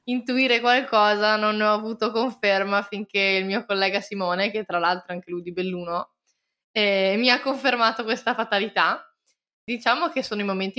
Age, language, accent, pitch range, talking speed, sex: 20-39, Italian, native, 180-220 Hz, 170 wpm, female